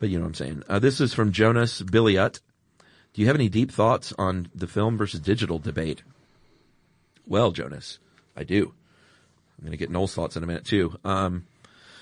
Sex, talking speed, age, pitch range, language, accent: male, 195 wpm, 40-59, 85-100 Hz, English, American